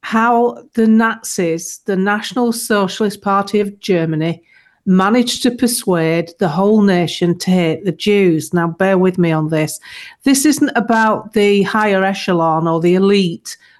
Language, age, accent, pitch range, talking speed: English, 50-69, British, 180-245 Hz, 150 wpm